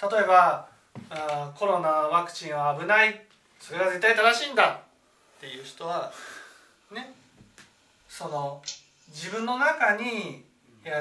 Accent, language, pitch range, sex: native, Japanese, 150-230 Hz, male